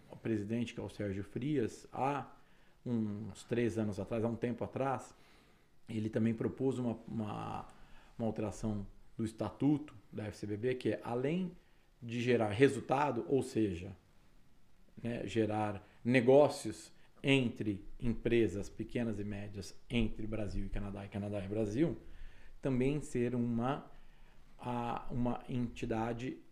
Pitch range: 105-125 Hz